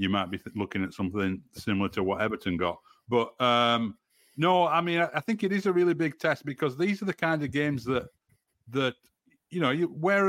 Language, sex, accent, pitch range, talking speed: English, male, British, 110-145 Hz, 225 wpm